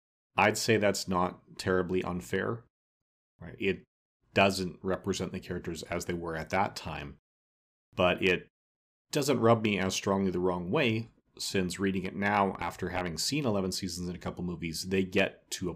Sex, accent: male, American